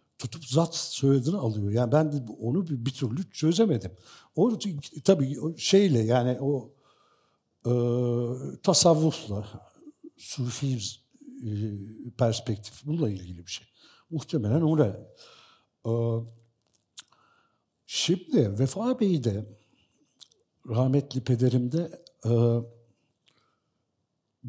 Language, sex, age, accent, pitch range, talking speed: Turkish, male, 60-79, native, 115-150 Hz, 90 wpm